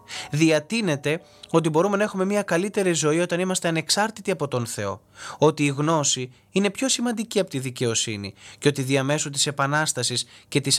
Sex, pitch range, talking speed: male, 125-160 Hz, 170 wpm